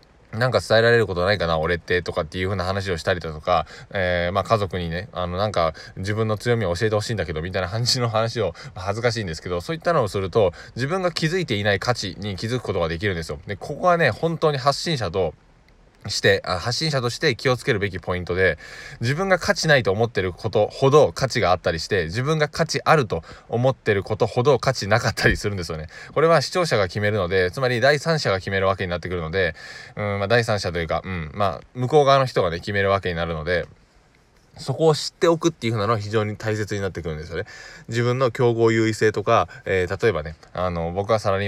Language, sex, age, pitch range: Japanese, male, 20-39, 90-120 Hz